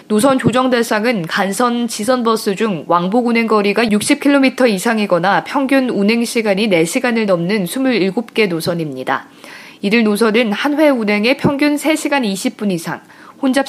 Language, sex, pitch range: Korean, female, 195-255 Hz